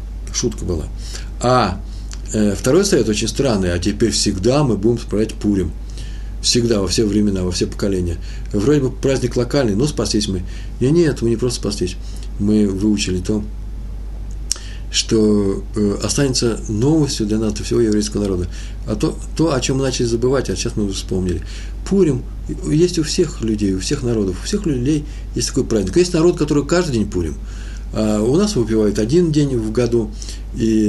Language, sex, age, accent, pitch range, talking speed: Russian, male, 50-69, native, 100-125 Hz, 170 wpm